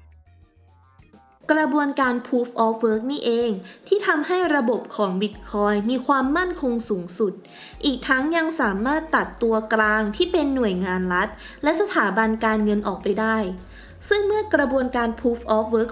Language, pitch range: Thai, 205-275 Hz